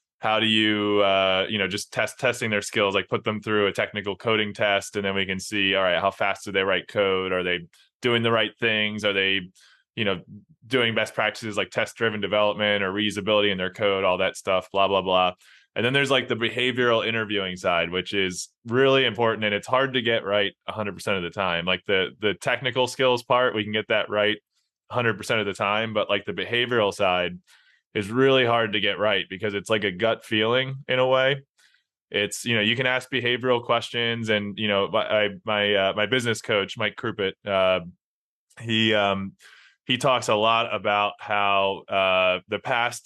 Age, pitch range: 20-39, 100-120 Hz